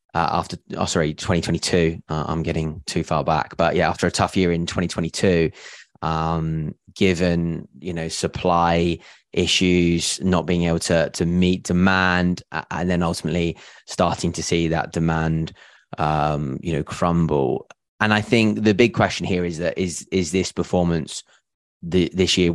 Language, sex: English, male